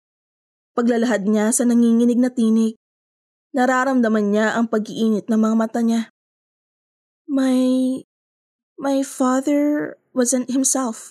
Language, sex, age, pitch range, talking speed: Filipino, female, 20-39, 220-265 Hz, 105 wpm